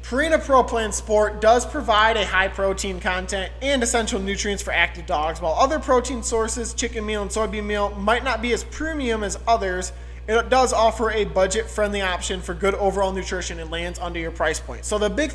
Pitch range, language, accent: 185-225 Hz, English, American